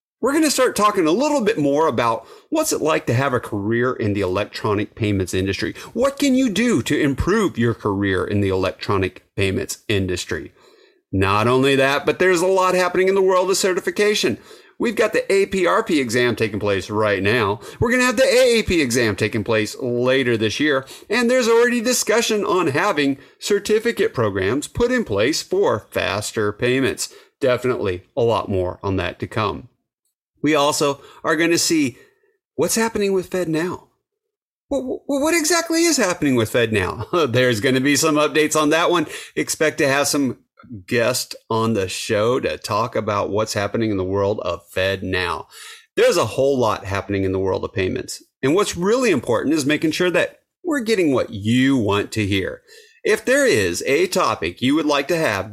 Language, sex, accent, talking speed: English, male, American, 185 wpm